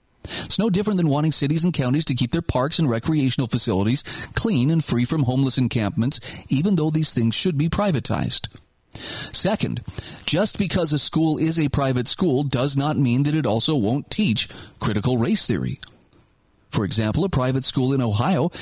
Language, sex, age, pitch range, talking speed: English, male, 40-59, 115-160 Hz, 175 wpm